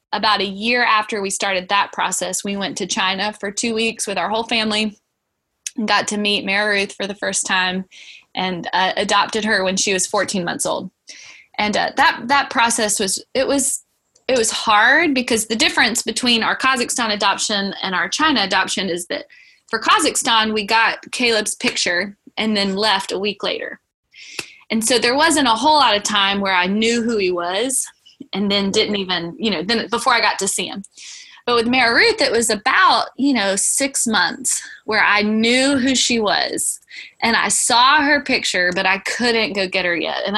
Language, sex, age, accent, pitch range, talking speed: English, female, 20-39, American, 195-235 Hz, 200 wpm